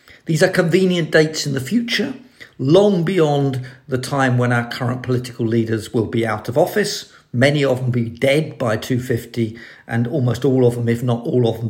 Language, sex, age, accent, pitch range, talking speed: English, male, 50-69, British, 125-165 Hz, 195 wpm